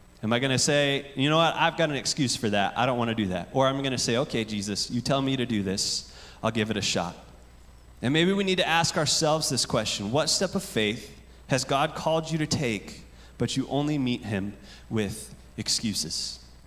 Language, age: English, 30-49